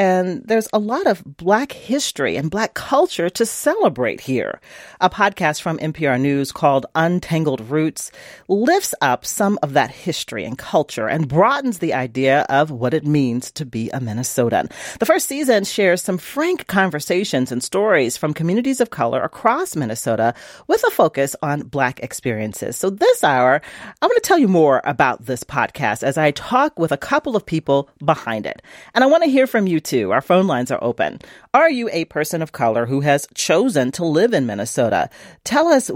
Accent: American